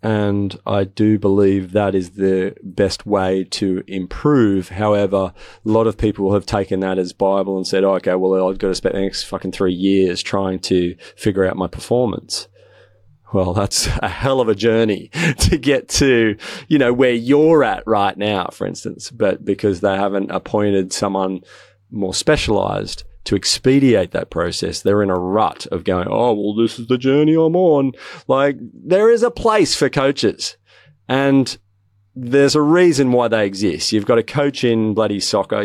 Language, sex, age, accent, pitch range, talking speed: English, male, 30-49, Australian, 95-115 Hz, 180 wpm